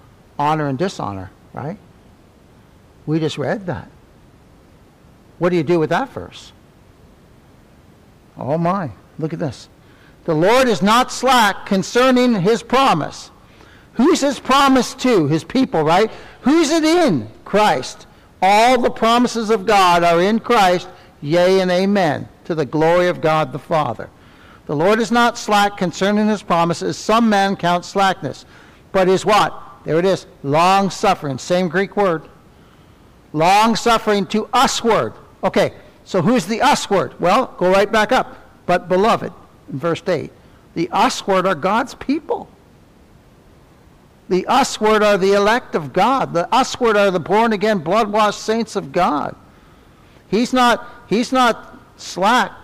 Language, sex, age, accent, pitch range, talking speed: English, male, 60-79, American, 180-235 Hz, 150 wpm